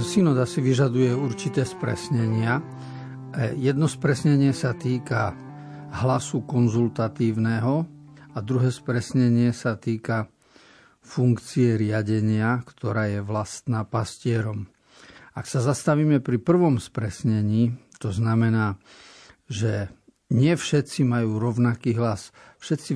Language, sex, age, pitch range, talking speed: Slovak, male, 50-69, 115-135 Hz, 95 wpm